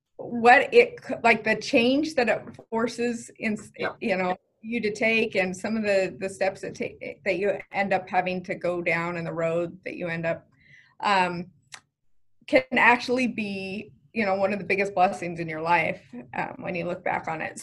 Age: 30-49